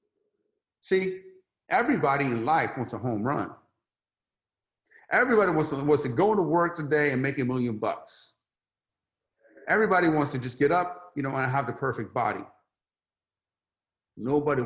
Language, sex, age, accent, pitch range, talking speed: English, male, 40-59, American, 115-155 Hz, 145 wpm